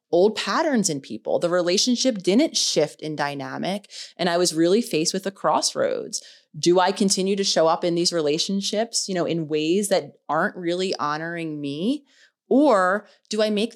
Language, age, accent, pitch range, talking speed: English, 30-49, American, 160-205 Hz, 175 wpm